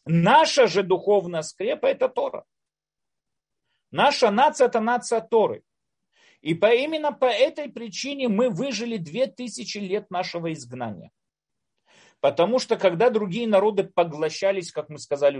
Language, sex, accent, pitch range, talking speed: Russian, male, native, 155-230 Hz, 120 wpm